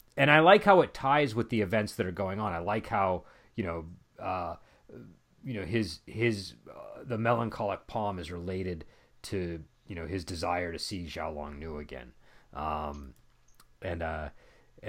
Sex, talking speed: male, 175 wpm